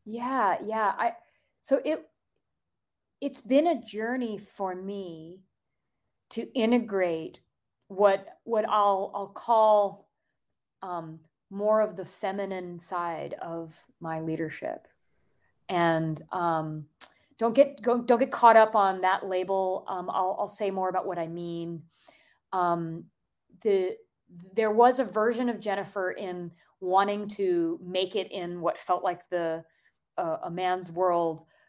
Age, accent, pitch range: 30-49, American, 170-210 Hz